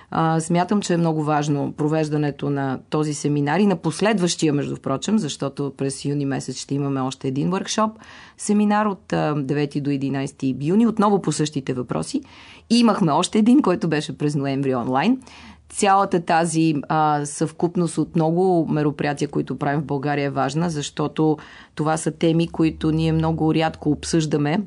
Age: 30-49